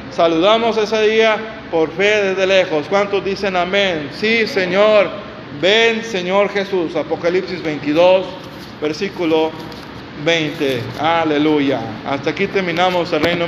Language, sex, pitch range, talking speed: Spanish, male, 160-195 Hz, 110 wpm